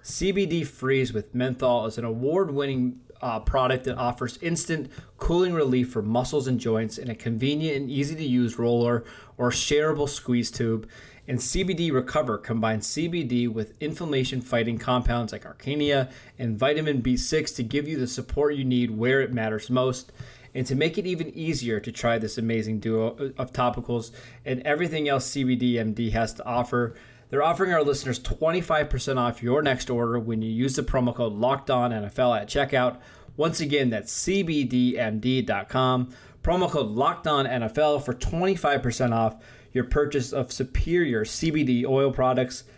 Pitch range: 120-145 Hz